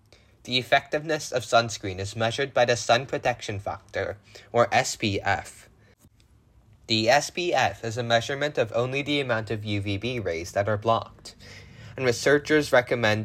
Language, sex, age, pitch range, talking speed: English, male, 20-39, 105-130 Hz, 140 wpm